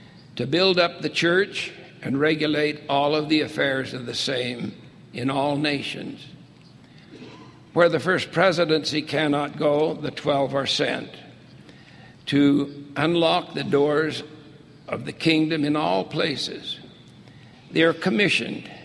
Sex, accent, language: male, American, English